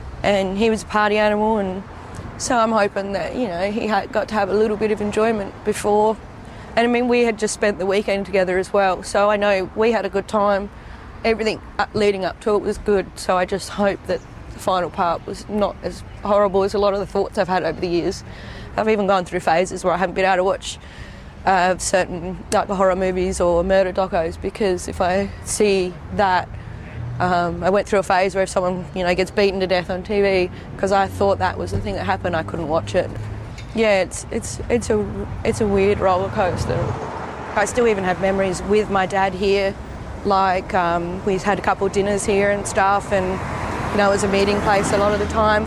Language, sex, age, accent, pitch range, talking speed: English, female, 20-39, Australian, 185-210 Hz, 225 wpm